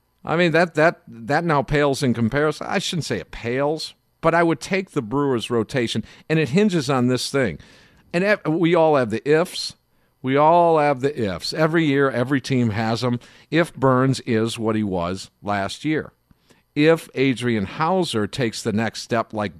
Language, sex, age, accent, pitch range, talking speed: English, male, 50-69, American, 110-155 Hz, 180 wpm